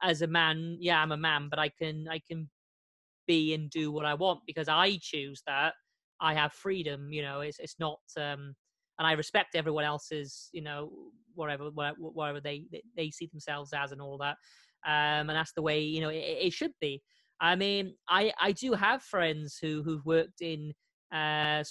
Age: 30-49